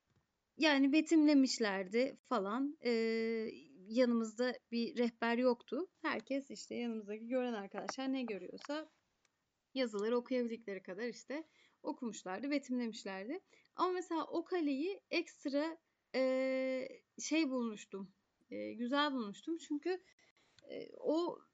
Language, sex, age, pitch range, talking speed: Turkish, female, 30-49, 235-295 Hz, 100 wpm